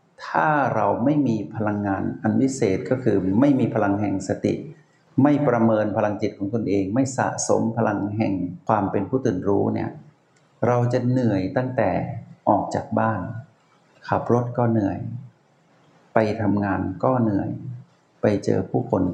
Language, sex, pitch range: Thai, male, 110-145 Hz